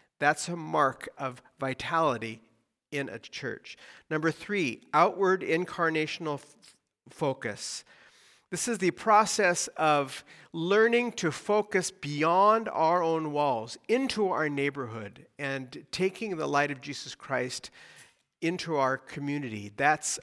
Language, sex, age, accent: English, male, 50-69, American